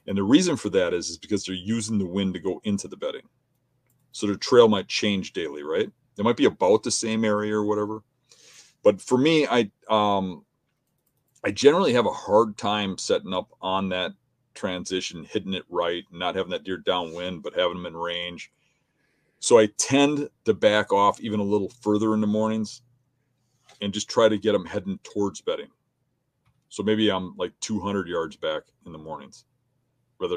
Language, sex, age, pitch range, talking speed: English, male, 40-59, 100-130 Hz, 190 wpm